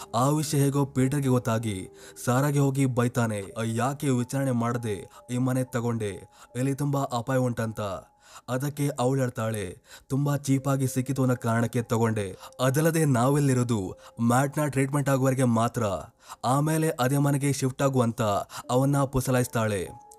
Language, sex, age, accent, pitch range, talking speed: Kannada, male, 20-39, native, 120-140 Hz, 120 wpm